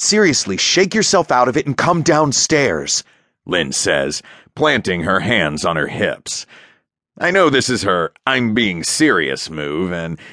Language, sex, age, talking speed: English, male, 40-59, 155 wpm